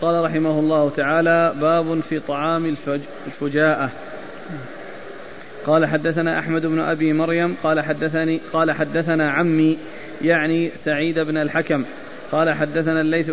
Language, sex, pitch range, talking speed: Arabic, male, 150-160 Hz, 115 wpm